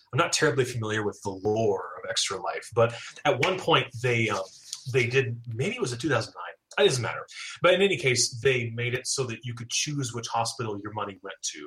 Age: 30-49